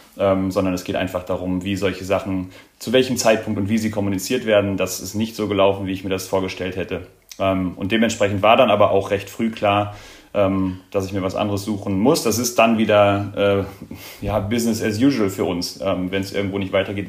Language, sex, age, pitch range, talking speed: German, male, 30-49, 95-105 Hz, 215 wpm